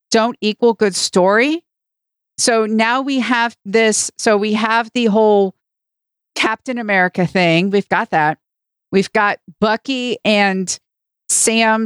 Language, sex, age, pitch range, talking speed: English, female, 50-69, 195-240 Hz, 125 wpm